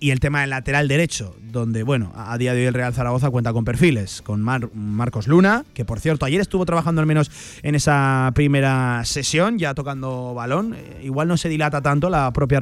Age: 20-39